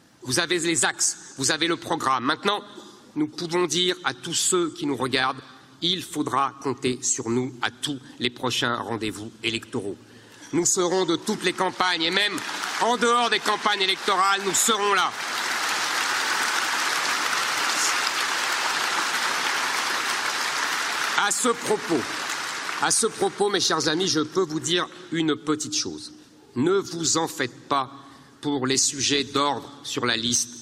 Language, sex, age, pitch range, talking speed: French, male, 50-69, 130-185 Hz, 145 wpm